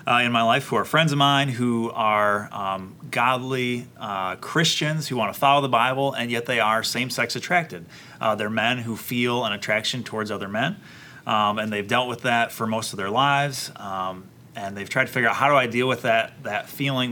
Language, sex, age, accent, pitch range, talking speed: English, male, 30-49, American, 110-130 Hz, 220 wpm